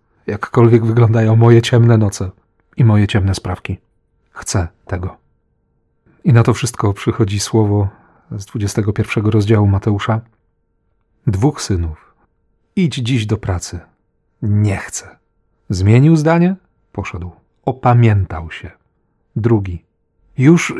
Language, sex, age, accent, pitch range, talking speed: Polish, male, 40-59, native, 100-125 Hz, 105 wpm